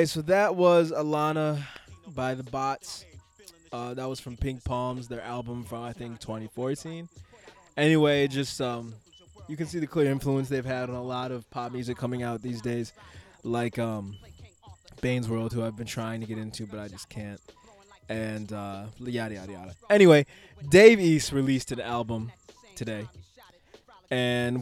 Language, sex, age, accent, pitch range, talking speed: English, male, 20-39, American, 115-150 Hz, 165 wpm